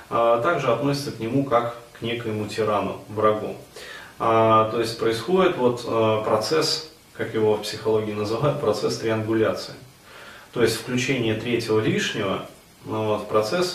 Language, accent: Russian, native